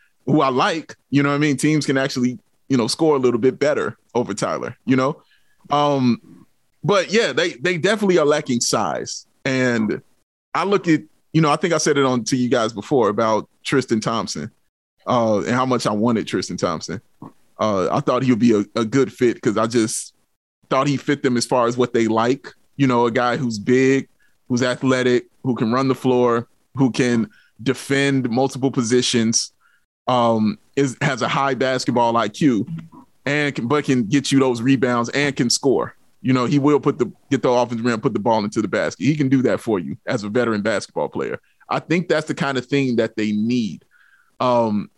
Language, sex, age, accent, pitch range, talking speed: English, male, 30-49, American, 120-145 Hz, 205 wpm